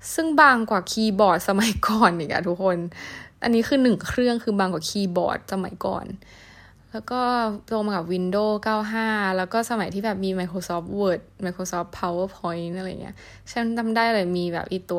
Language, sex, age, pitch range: Thai, female, 20-39, 180-220 Hz